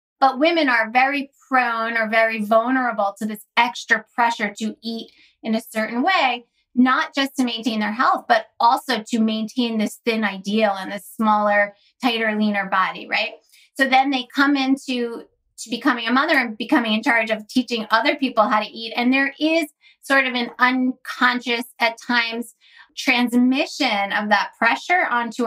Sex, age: female, 20-39